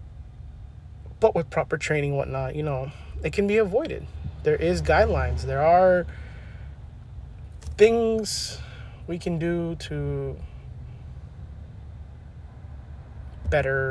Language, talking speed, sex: English, 100 wpm, male